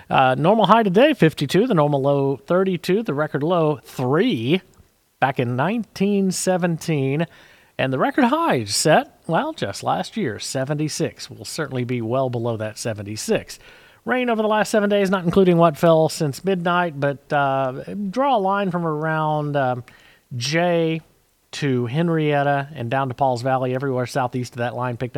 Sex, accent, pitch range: male, American, 125-165 Hz